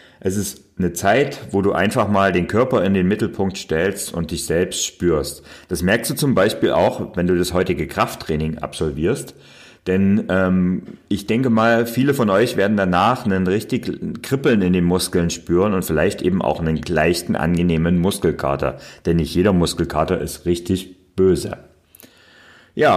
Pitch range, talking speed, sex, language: 90-115 Hz, 165 wpm, male, German